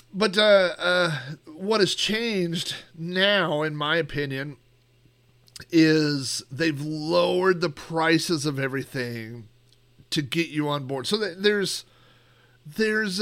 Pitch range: 115-170 Hz